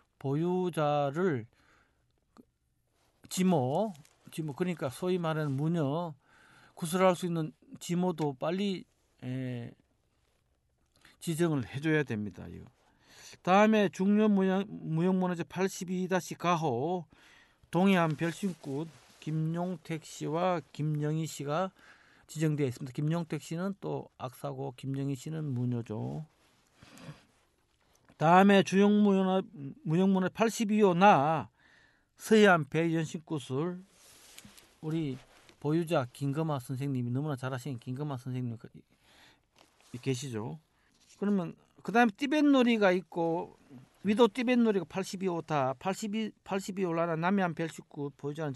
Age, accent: 50-69, native